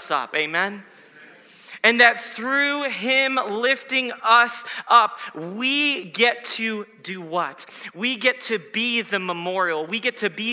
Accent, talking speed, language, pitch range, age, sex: American, 135 wpm, English, 155-220 Hz, 30-49, male